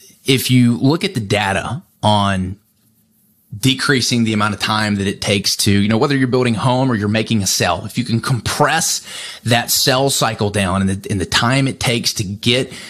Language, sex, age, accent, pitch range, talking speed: English, male, 20-39, American, 105-125 Hz, 210 wpm